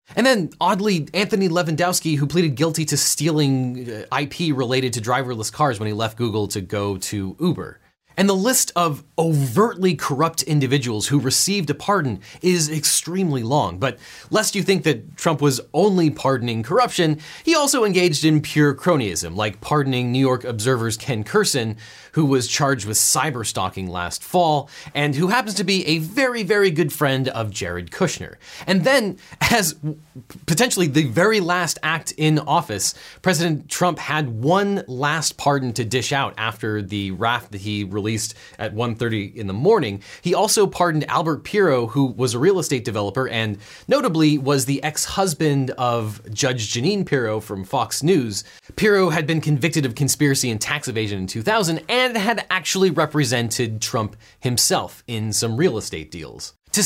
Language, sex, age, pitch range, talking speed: English, male, 30-49, 115-175 Hz, 165 wpm